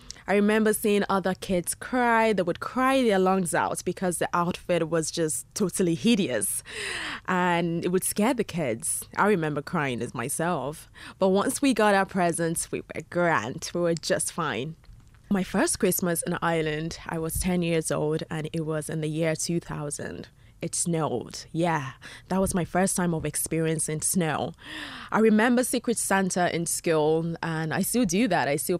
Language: English